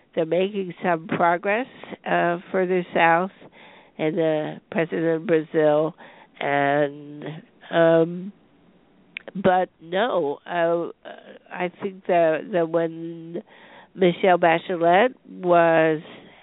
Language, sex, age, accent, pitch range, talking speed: English, female, 60-79, American, 155-185 Hz, 90 wpm